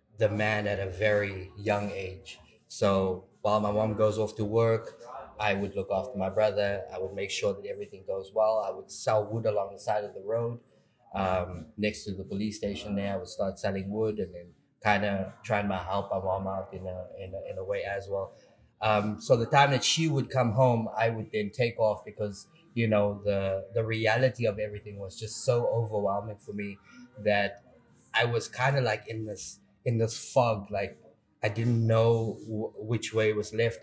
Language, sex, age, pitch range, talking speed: English, male, 20-39, 100-115 Hz, 210 wpm